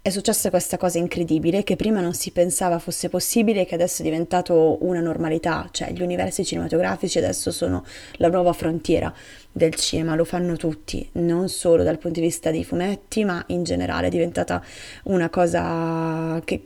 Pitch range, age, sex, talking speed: 165-185 Hz, 20-39, female, 175 wpm